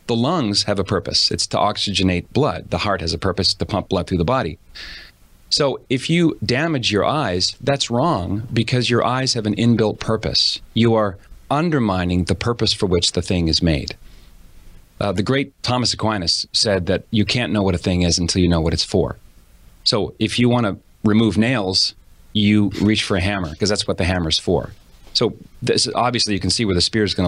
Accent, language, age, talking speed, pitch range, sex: American, English, 30-49, 210 wpm, 90-115 Hz, male